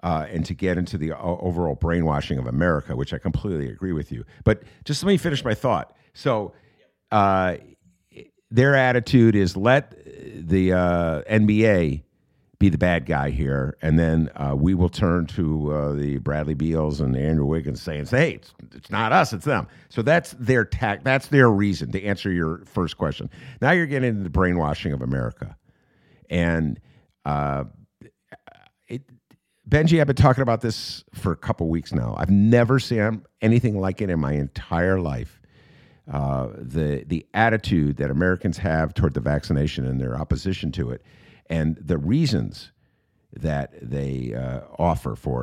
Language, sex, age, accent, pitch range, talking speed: English, male, 50-69, American, 75-110 Hz, 170 wpm